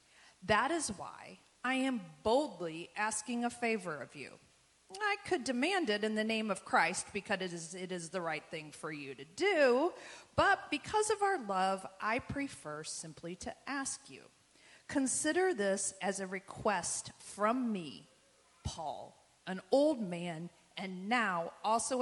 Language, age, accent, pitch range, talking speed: English, 40-59, American, 175-275 Hz, 155 wpm